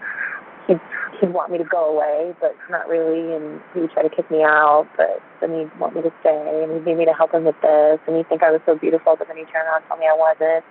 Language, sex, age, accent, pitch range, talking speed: English, female, 20-39, American, 160-180 Hz, 280 wpm